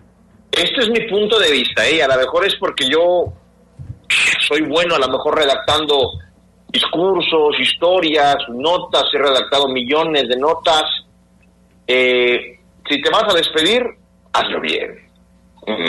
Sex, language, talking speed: male, Spanish, 130 wpm